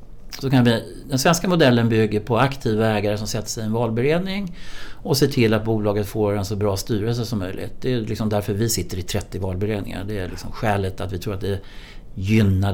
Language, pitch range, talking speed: Swedish, 95-115 Hz, 220 wpm